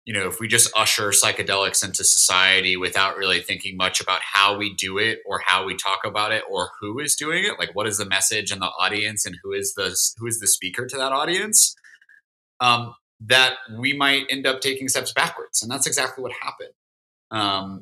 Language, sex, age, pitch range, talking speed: English, male, 30-49, 100-150 Hz, 210 wpm